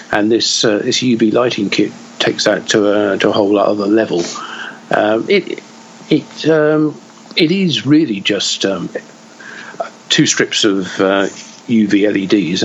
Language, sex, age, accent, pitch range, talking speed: English, male, 50-69, British, 100-115 Hz, 145 wpm